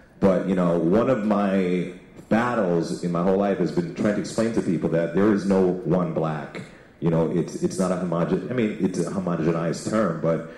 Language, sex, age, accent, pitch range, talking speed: English, male, 40-59, American, 85-105 Hz, 215 wpm